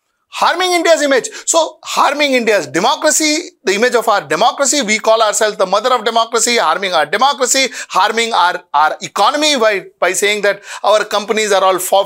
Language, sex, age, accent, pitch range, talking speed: English, male, 50-69, Indian, 220-330 Hz, 170 wpm